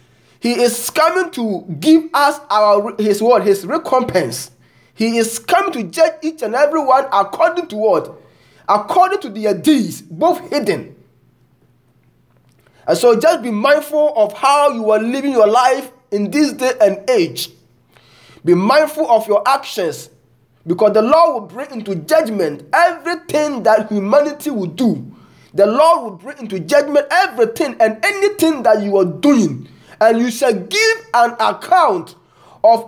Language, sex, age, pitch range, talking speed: English, male, 20-39, 210-320 Hz, 150 wpm